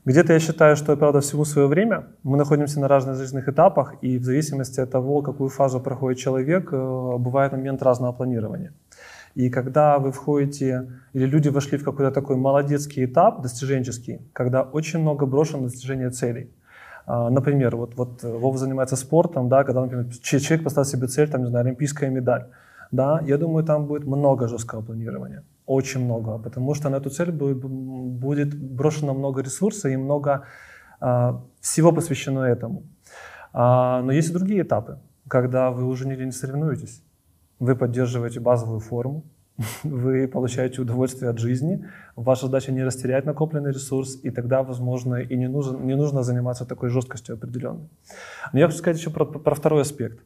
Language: Ukrainian